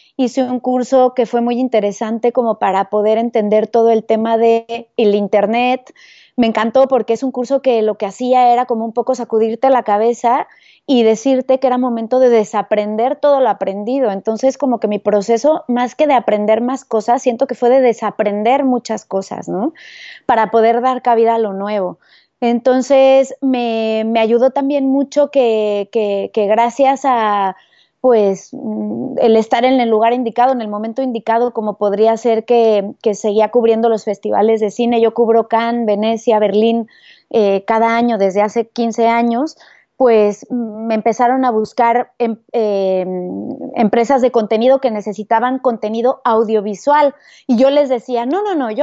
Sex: female